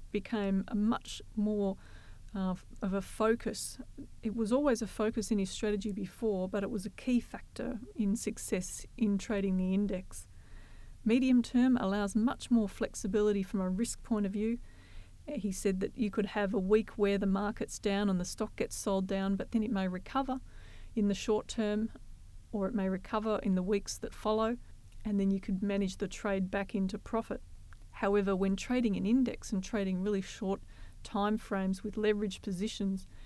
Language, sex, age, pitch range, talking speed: English, female, 40-59, 195-220 Hz, 185 wpm